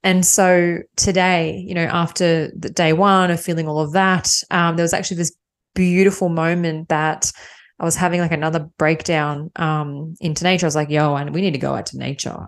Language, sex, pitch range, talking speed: English, female, 160-195 Hz, 205 wpm